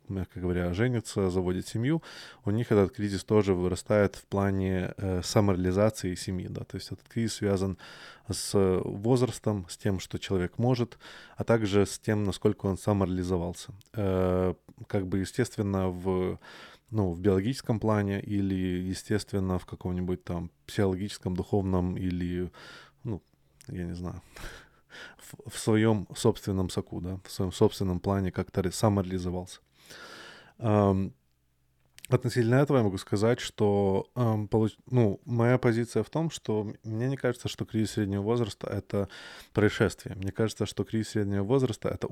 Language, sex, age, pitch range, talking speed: Russian, male, 20-39, 95-110 Hz, 135 wpm